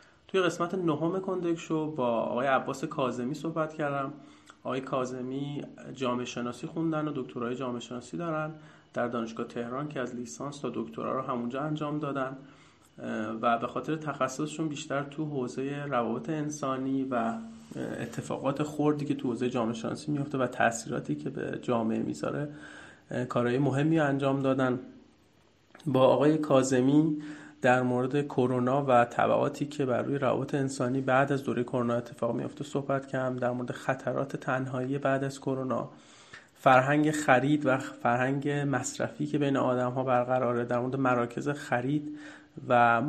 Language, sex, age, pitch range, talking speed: Persian, male, 30-49, 125-145 Hz, 145 wpm